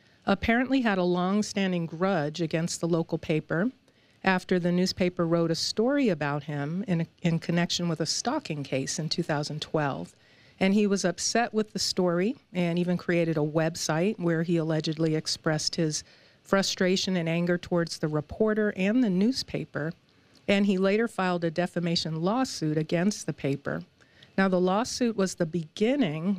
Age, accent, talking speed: 50-69, American, 155 wpm